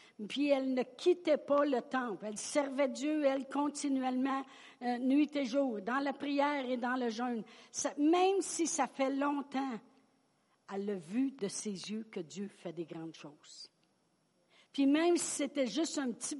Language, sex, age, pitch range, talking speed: French, female, 60-79, 210-285 Hz, 175 wpm